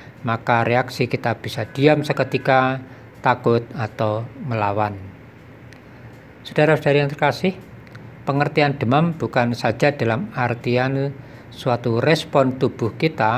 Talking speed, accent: 100 wpm, native